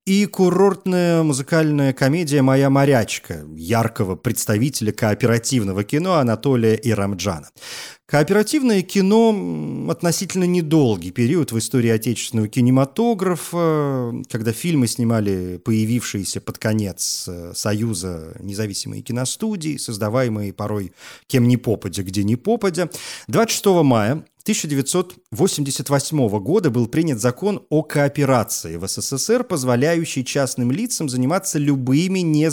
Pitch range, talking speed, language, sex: 115-165 Hz, 105 wpm, Russian, male